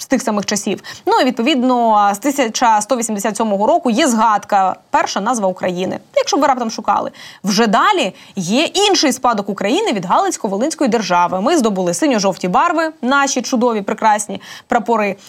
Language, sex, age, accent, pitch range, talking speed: Ukrainian, female, 20-39, native, 205-280 Hz, 140 wpm